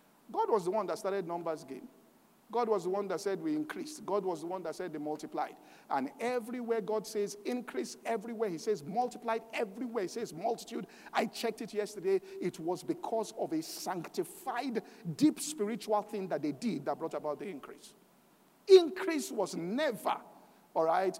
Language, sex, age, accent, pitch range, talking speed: English, male, 50-69, Nigerian, 205-265 Hz, 175 wpm